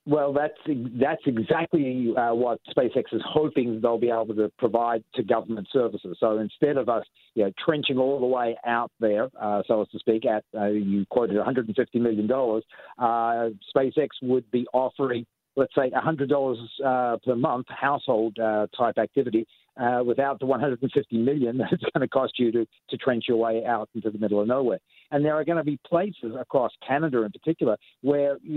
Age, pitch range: 50-69, 110-140 Hz